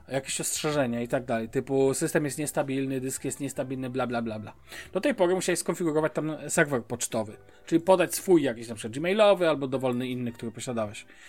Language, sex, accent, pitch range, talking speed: Polish, male, native, 135-170 Hz, 190 wpm